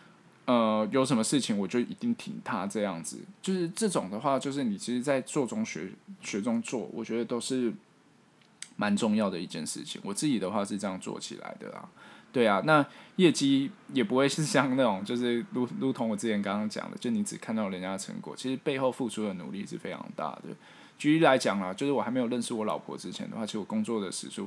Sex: male